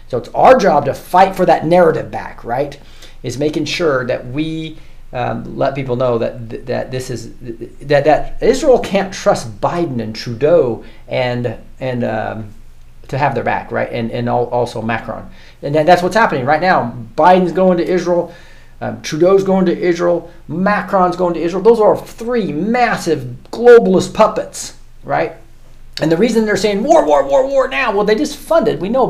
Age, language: 40-59, English